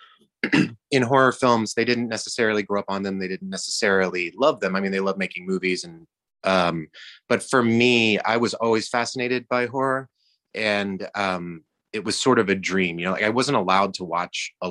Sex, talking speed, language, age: male, 200 wpm, English, 30-49